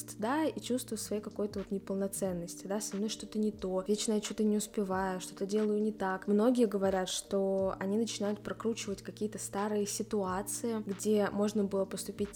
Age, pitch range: 20-39, 195-225 Hz